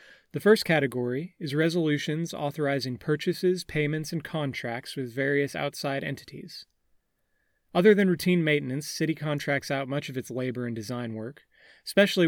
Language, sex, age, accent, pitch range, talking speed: English, male, 30-49, American, 135-160 Hz, 140 wpm